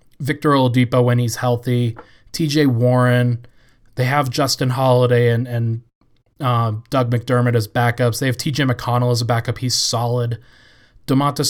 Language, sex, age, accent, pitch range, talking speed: English, male, 20-39, American, 120-135 Hz, 145 wpm